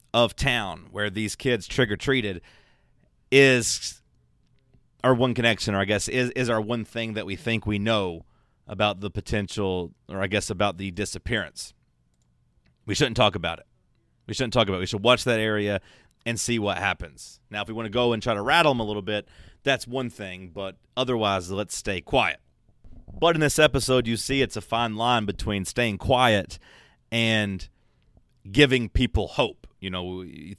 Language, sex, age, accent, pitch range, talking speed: English, male, 30-49, American, 100-120 Hz, 185 wpm